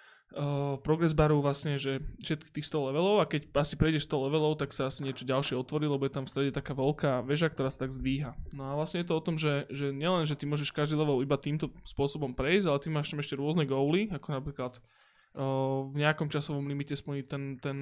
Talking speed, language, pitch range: 230 wpm, Slovak, 140-155 Hz